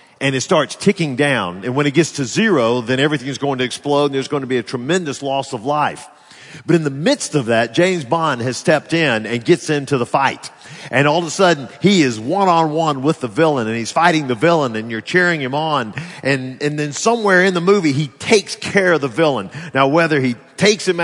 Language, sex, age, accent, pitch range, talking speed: English, male, 50-69, American, 130-180 Hz, 235 wpm